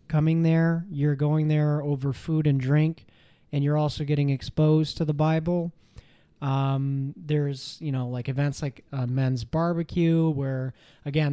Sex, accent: male, American